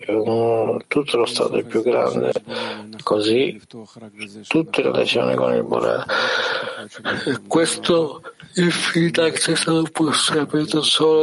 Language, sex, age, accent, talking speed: Italian, male, 60-79, native, 120 wpm